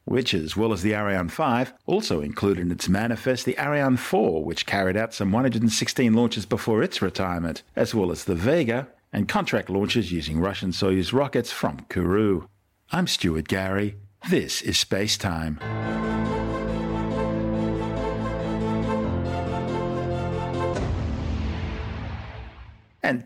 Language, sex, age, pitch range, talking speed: English, male, 50-69, 95-120 Hz, 120 wpm